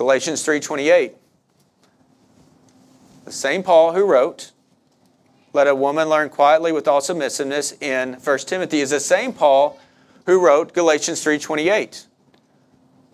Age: 40-59